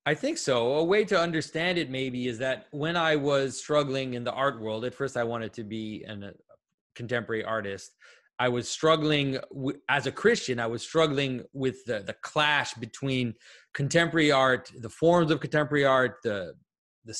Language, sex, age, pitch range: English, male, 30-49, 125-155 Hz